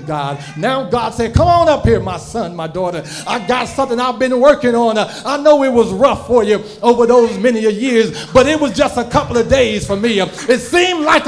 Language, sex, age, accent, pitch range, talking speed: English, male, 40-59, American, 225-290 Hz, 230 wpm